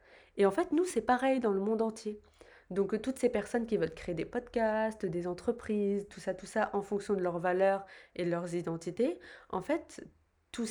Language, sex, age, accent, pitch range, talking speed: French, female, 20-39, French, 180-225 Hz, 205 wpm